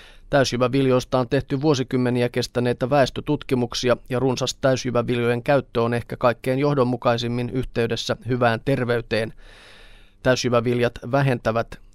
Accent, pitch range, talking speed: native, 115-130 Hz, 95 wpm